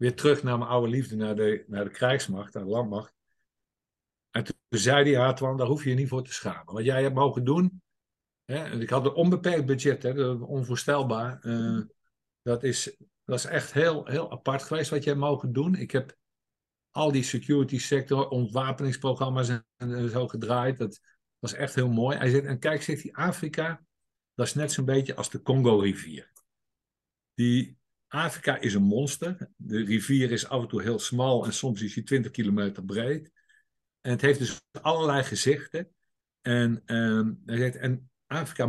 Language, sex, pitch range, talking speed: Dutch, male, 120-145 Hz, 180 wpm